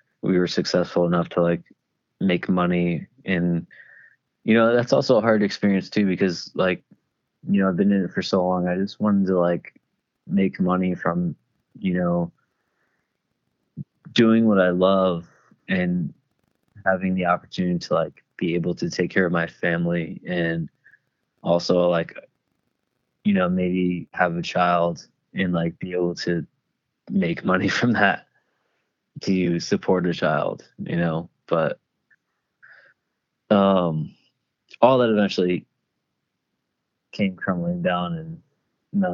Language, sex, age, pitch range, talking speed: English, male, 20-39, 85-105 Hz, 140 wpm